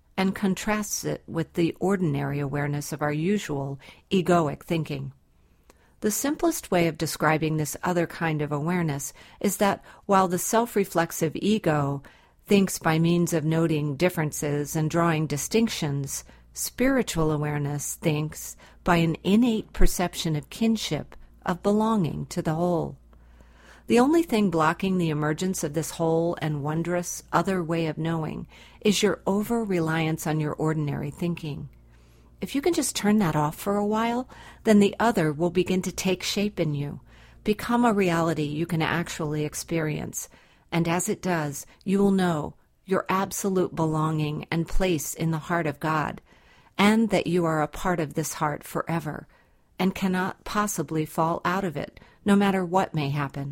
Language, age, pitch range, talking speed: English, 50-69, 150-190 Hz, 155 wpm